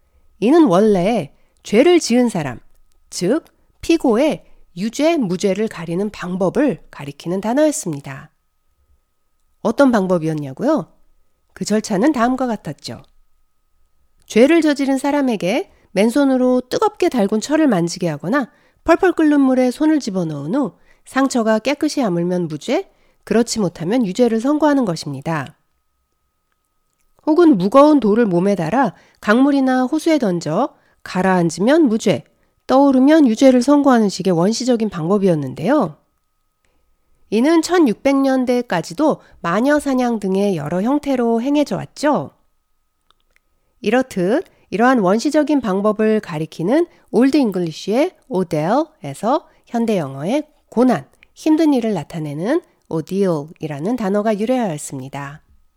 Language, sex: Korean, female